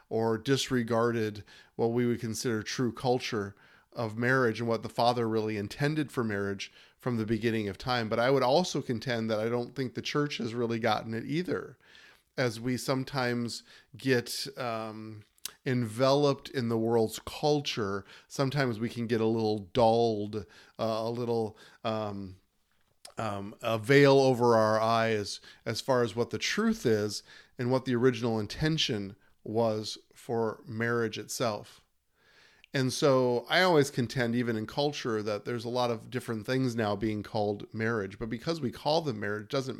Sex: male